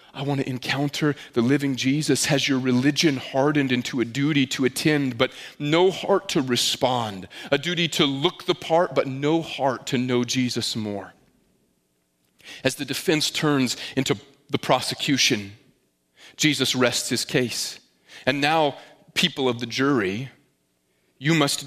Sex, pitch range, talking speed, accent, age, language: male, 125-160 Hz, 145 wpm, American, 30-49, English